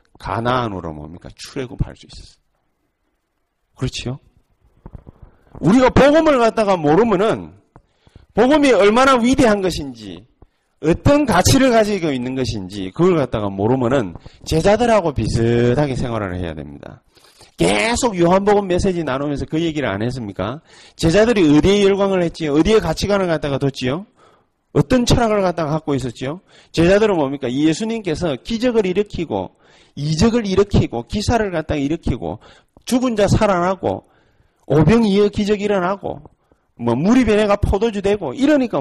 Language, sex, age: Korean, male, 40-59